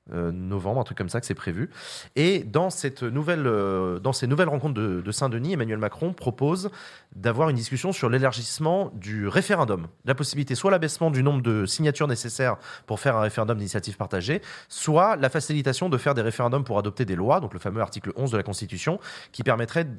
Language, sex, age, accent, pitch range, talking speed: French, male, 30-49, French, 105-140 Hz, 200 wpm